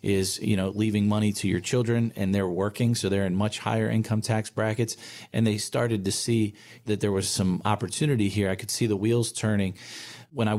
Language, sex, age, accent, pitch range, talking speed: English, male, 40-59, American, 105-120 Hz, 215 wpm